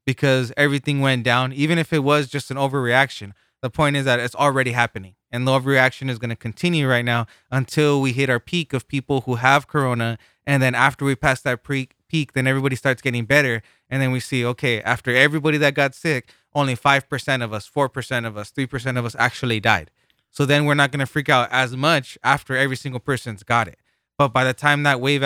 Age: 20-39